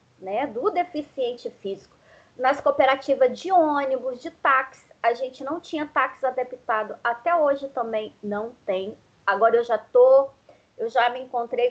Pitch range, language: 230-315 Hz, Portuguese